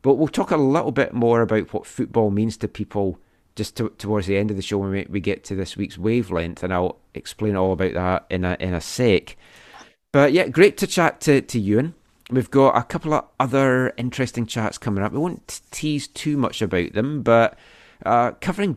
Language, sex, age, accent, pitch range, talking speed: English, male, 30-49, British, 95-130 Hz, 215 wpm